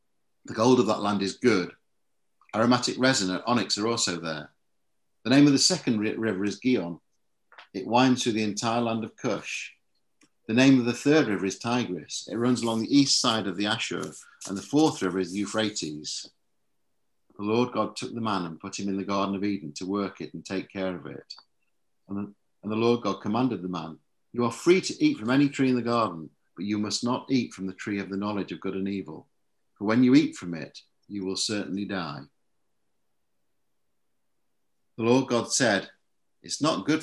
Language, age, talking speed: English, 50-69, 205 wpm